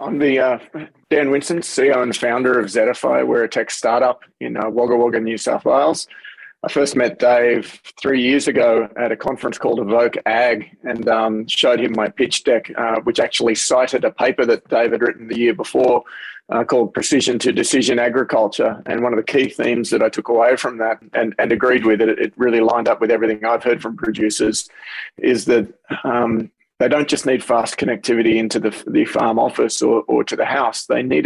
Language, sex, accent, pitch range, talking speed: English, male, Australian, 110-125 Hz, 205 wpm